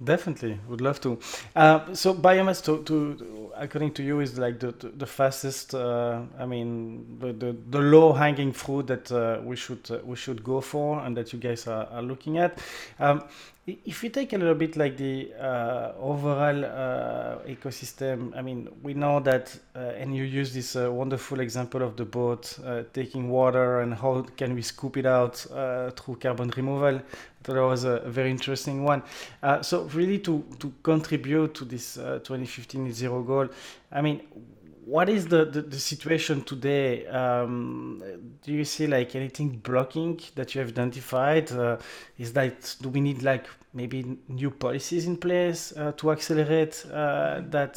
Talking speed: 180 wpm